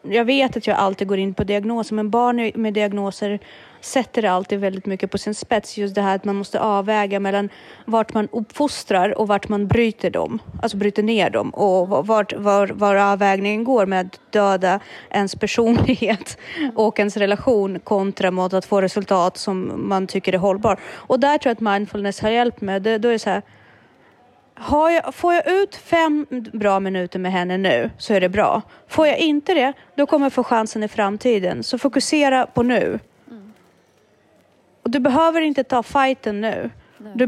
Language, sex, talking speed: Swedish, female, 185 wpm